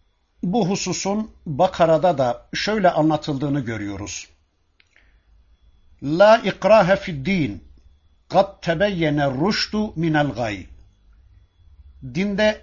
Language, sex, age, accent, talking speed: Turkish, male, 60-79, native, 80 wpm